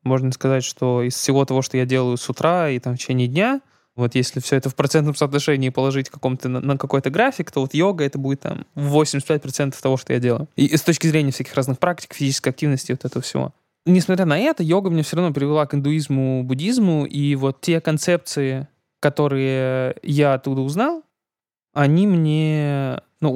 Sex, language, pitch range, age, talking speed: male, Russian, 135-155 Hz, 20-39, 190 wpm